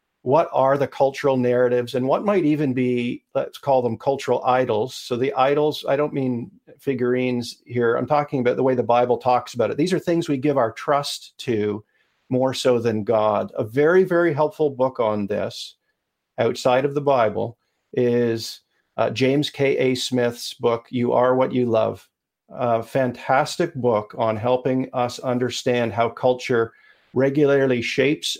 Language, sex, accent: English, male, American